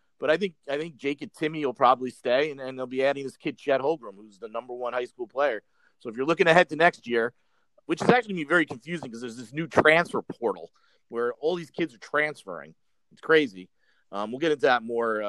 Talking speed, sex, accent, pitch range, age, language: 245 wpm, male, American, 110-165 Hz, 40-59, English